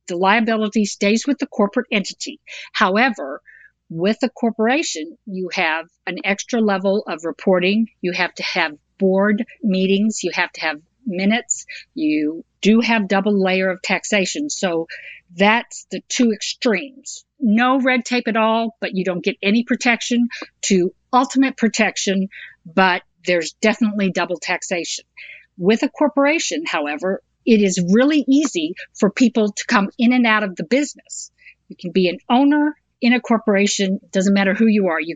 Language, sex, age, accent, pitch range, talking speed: English, female, 50-69, American, 190-235 Hz, 155 wpm